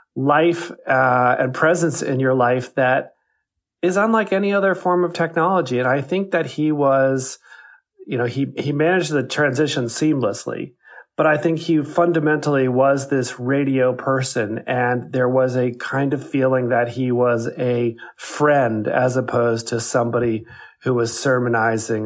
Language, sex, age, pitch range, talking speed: English, male, 30-49, 120-160 Hz, 155 wpm